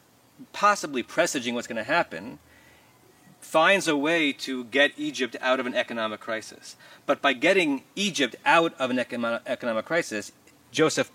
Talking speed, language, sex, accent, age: 145 wpm, English, male, American, 30-49